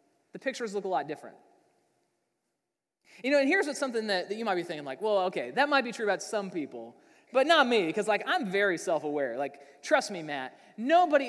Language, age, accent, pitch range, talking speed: English, 30-49, American, 190-270 Hz, 215 wpm